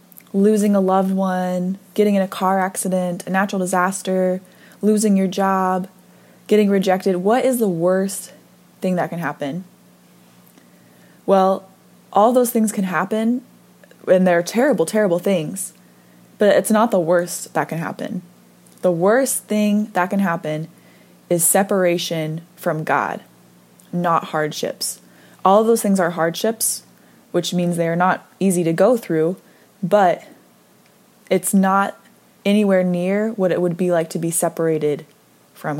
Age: 20-39